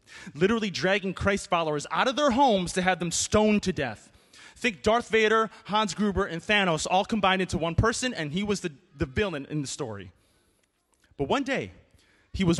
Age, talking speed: 30-49, 190 wpm